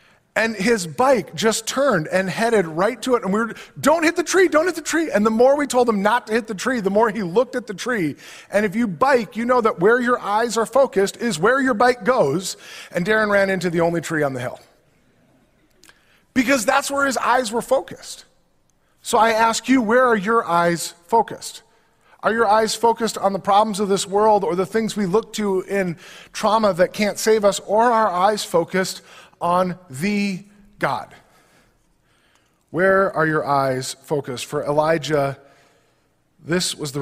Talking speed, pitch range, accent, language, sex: 200 wpm, 145-220 Hz, American, English, male